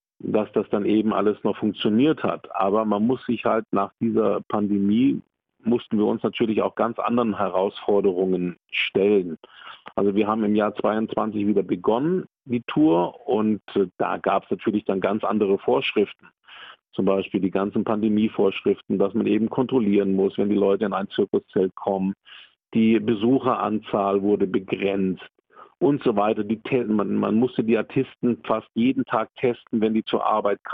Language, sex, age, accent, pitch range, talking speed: German, male, 50-69, German, 100-115 Hz, 160 wpm